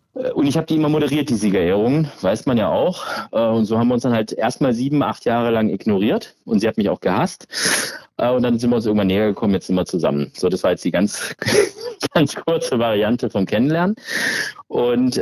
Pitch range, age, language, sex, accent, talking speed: 105-140 Hz, 30-49, German, male, German, 220 wpm